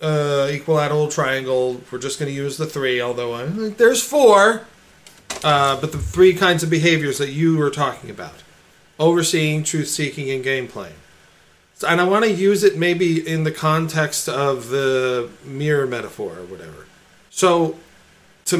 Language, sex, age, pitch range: English, male, 40-59, 140-170 Hz